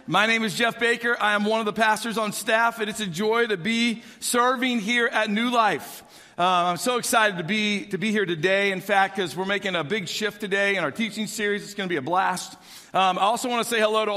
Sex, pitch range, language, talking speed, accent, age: male, 160-215 Hz, English, 260 wpm, American, 50-69